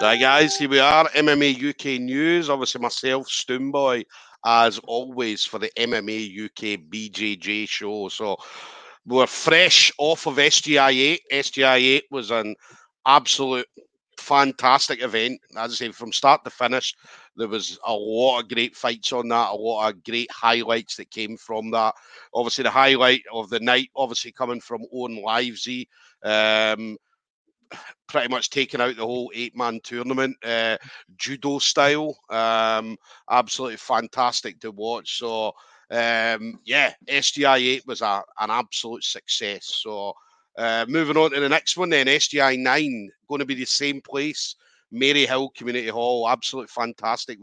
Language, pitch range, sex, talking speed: English, 115-140 Hz, male, 150 wpm